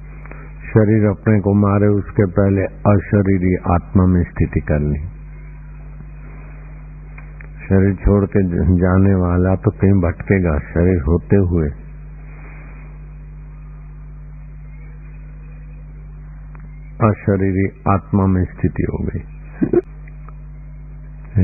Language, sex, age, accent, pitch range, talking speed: Hindi, male, 60-79, native, 95-150 Hz, 80 wpm